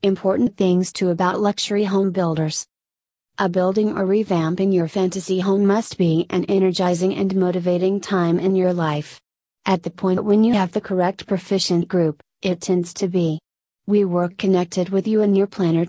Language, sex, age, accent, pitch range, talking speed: English, female, 30-49, American, 175-200 Hz, 175 wpm